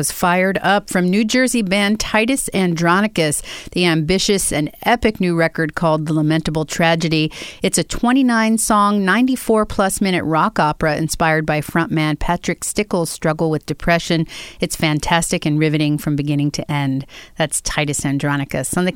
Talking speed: 145 wpm